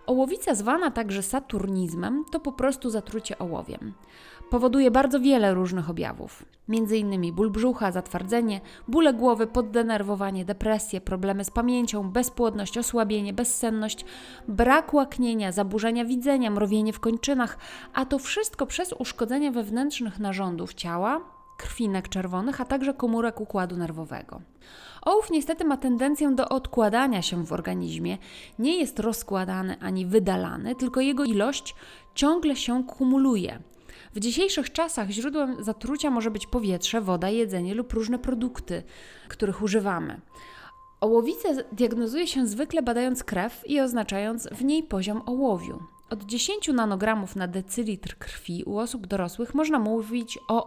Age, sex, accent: 30-49, female, native